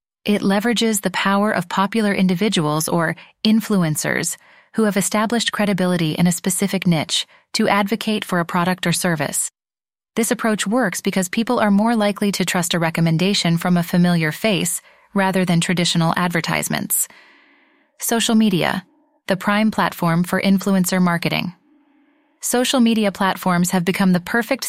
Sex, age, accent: female, 20-39, American